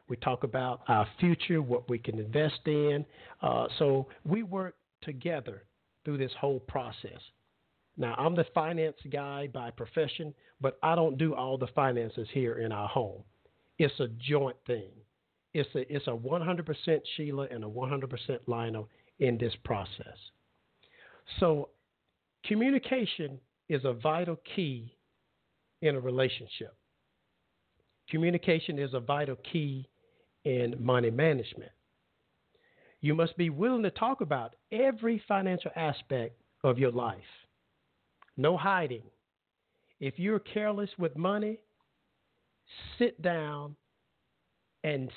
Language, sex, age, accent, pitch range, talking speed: English, male, 50-69, American, 120-170 Hz, 125 wpm